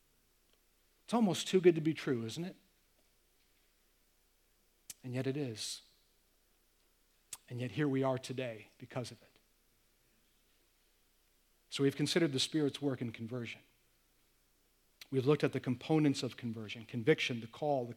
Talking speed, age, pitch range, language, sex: 135 wpm, 50-69, 115-145 Hz, English, male